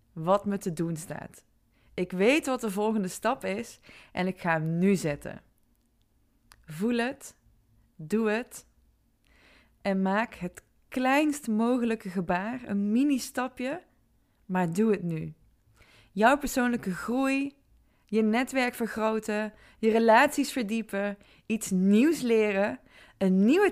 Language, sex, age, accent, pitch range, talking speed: Dutch, female, 20-39, Dutch, 185-240 Hz, 125 wpm